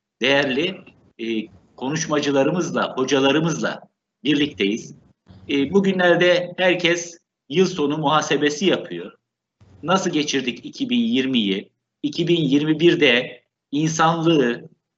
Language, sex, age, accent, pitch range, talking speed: Turkish, male, 60-79, native, 135-175 Hz, 60 wpm